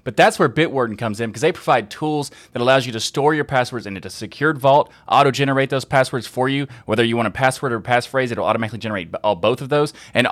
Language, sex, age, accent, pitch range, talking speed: English, male, 20-39, American, 110-140 Hz, 245 wpm